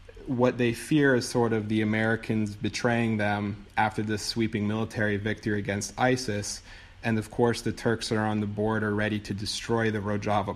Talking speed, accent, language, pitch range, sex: 175 wpm, American, English, 105-115 Hz, male